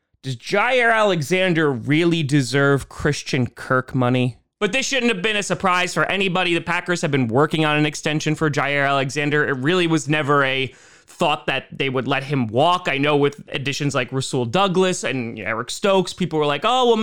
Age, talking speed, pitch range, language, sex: 20-39, 195 wpm, 135-175 Hz, English, male